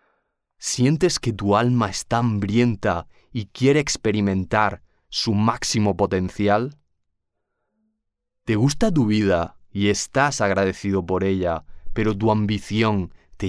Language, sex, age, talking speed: Spanish, male, 30-49, 110 wpm